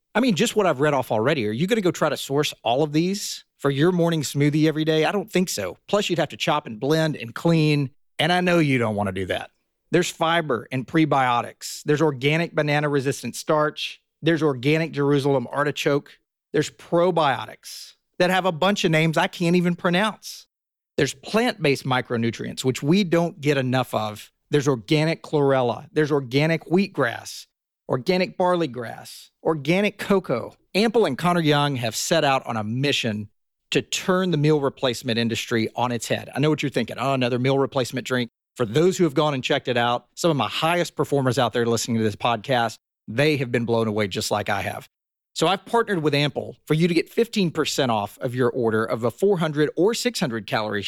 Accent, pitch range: American, 125-170 Hz